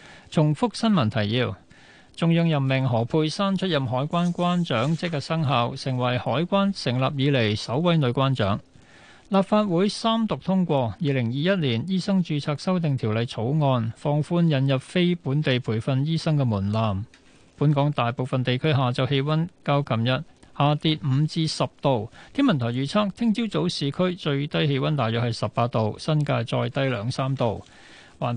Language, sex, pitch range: Chinese, male, 130-170 Hz